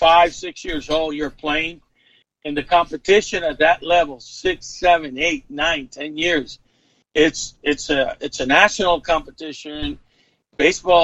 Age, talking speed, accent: 50-69, 135 wpm, American